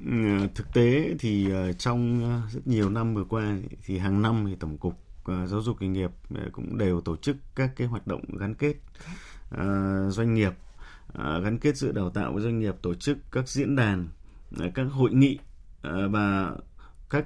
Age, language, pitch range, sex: 20-39, Vietnamese, 100-130 Hz, male